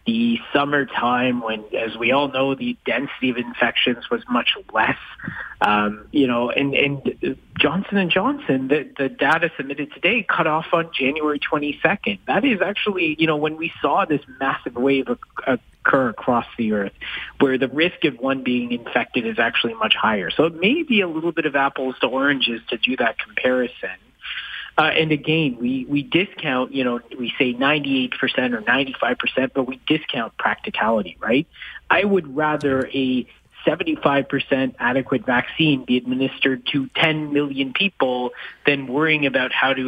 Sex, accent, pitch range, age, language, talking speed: male, American, 125-155 Hz, 30-49, English, 165 wpm